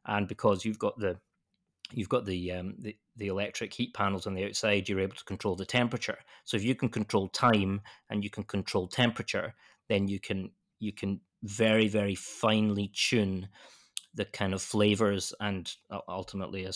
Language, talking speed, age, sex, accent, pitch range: English, 180 wpm, 20-39, male, British, 95-110 Hz